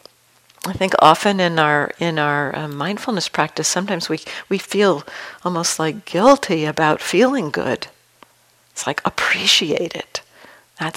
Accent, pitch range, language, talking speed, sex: American, 155-180 Hz, English, 135 wpm, female